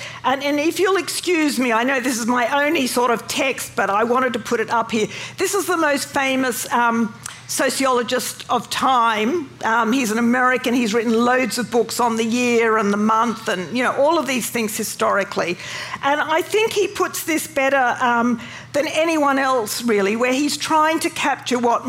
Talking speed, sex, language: 200 wpm, female, English